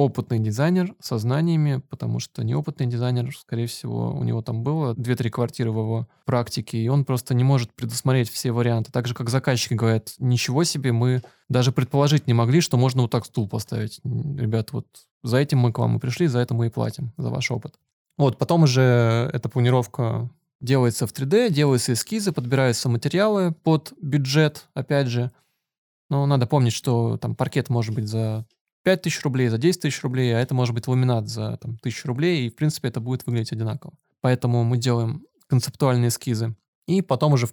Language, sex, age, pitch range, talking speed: Russian, male, 20-39, 120-140 Hz, 190 wpm